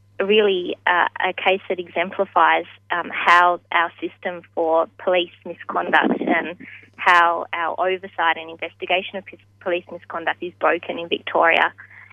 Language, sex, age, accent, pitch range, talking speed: English, female, 20-39, Australian, 165-185 Hz, 130 wpm